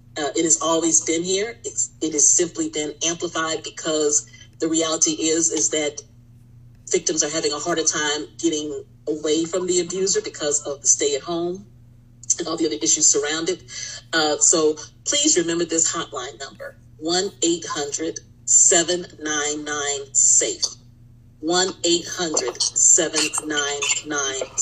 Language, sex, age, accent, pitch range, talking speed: English, female, 40-59, American, 140-175 Hz, 115 wpm